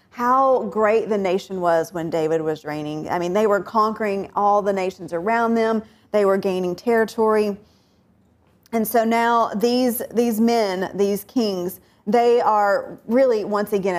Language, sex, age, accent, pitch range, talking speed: English, female, 40-59, American, 190-230 Hz, 155 wpm